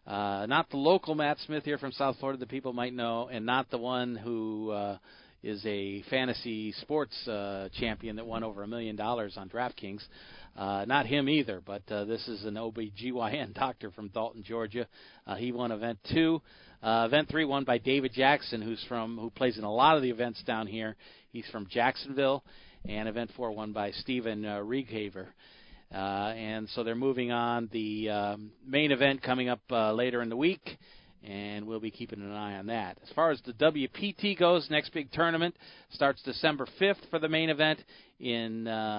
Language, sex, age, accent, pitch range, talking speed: English, male, 40-59, American, 110-135 Hz, 195 wpm